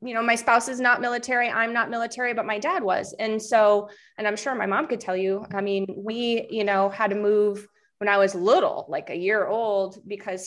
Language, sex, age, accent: English, female, 20-39, American